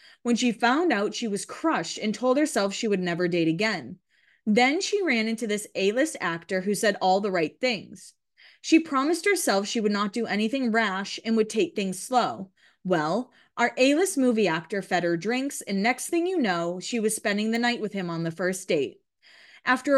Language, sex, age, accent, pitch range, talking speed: English, female, 20-39, American, 195-275 Hz, 200 wpm